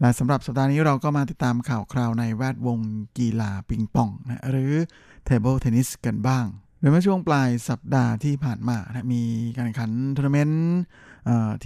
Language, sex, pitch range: Thai, male, 115-140 Hz